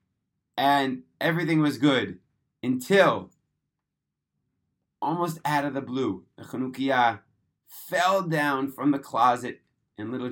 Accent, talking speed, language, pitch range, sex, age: American, 110 wpm, English, 115-140 Hz, male, 30-49